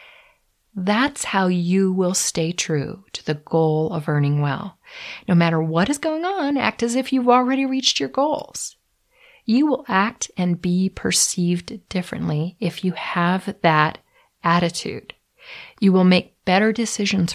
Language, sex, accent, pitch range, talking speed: English, female, American, 175-240 Hz, 150 wpm